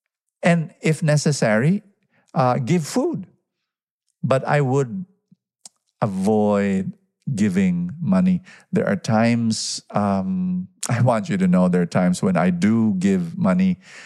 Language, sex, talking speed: English, male, 125 wpm